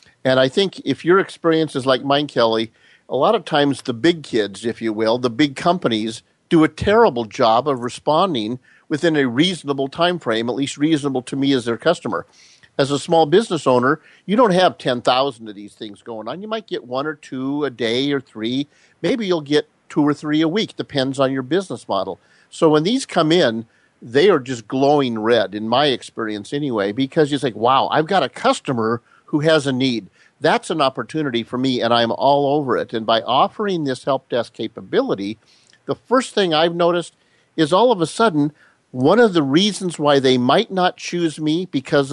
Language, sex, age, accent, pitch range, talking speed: English, male, 50-69, American, 120-160 Hz, 205 wpm